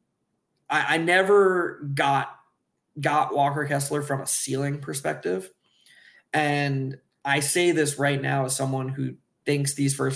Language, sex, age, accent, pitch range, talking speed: English, male, 20-39, American, 135-150 Hz, 135 wpm